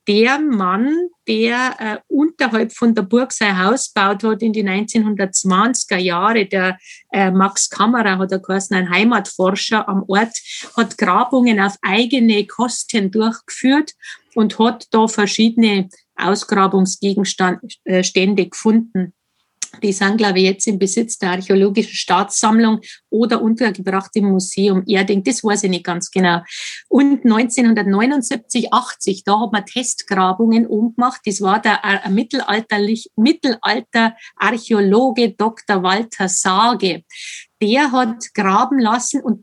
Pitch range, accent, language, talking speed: 195-235 Hz, Austrian, German, 125 wpm